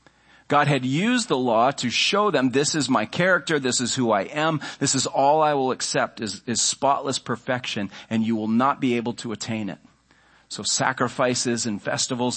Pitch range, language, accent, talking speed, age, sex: 110-140 Hz, English, American, 195 wpm, 40-59, male